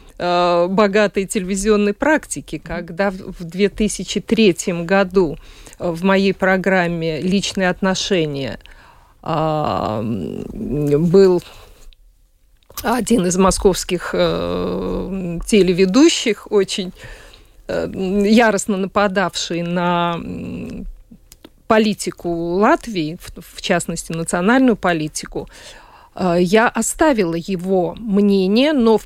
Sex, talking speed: female, 70 wpm